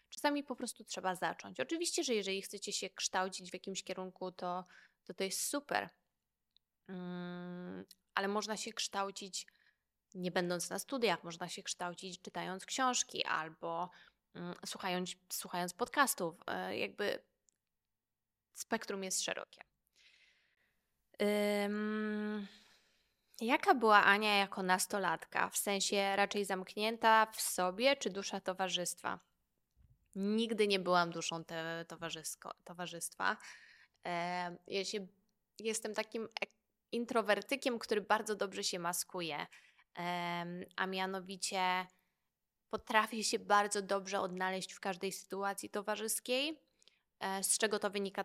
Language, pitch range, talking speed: Polish, 185-215 Hz, 110 wpm